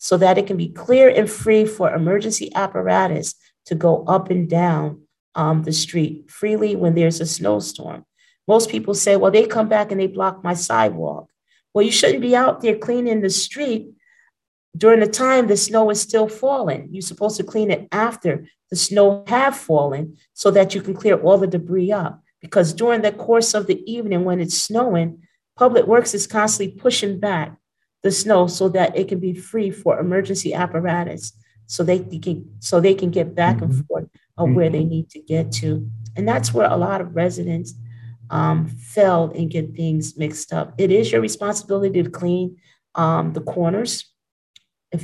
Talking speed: 185 wpm